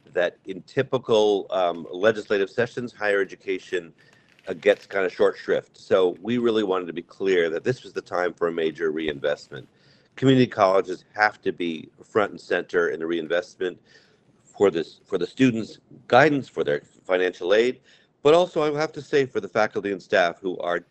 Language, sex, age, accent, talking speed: English, male, 50-69, American, 185 wpm